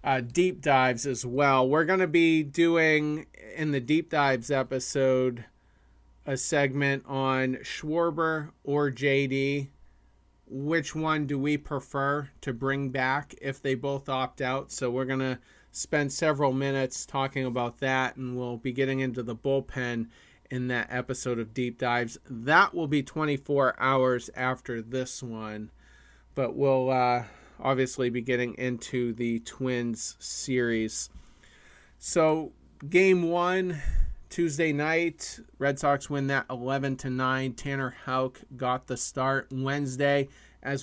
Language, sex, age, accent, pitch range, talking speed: English, male, 40-59, American, 125-140 Hz, 140 wpm